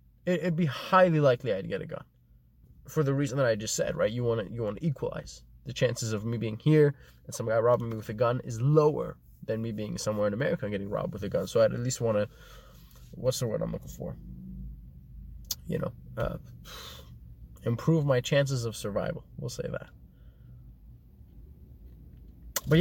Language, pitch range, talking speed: English, 110-160 Hz, 190 wpm